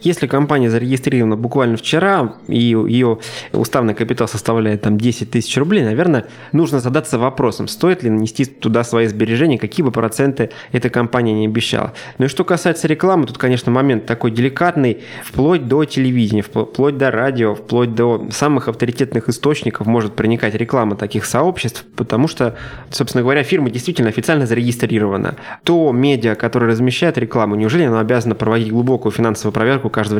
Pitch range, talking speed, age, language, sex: 110-130 Hz, 155 wpm, 20-39, Russian, male